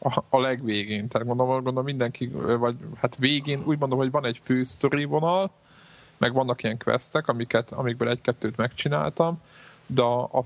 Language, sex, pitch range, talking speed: Hungarian, male, 115-135 Hz, 145 wpm